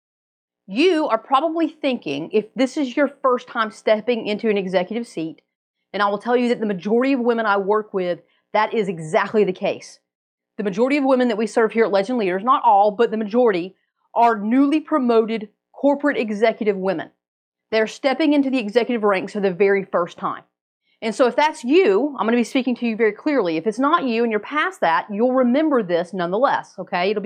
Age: 30-49